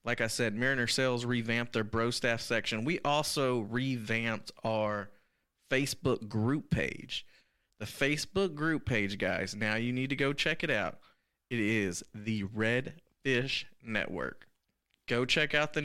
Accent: American